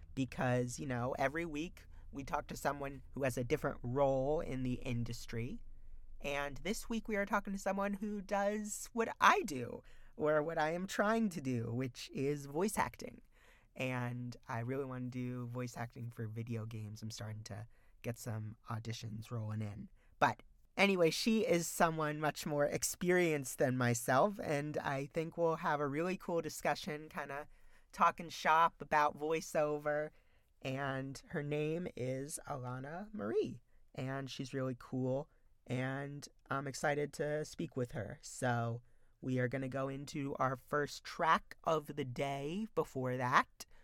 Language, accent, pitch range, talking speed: English, American, 120-155 Hz, 160 wpm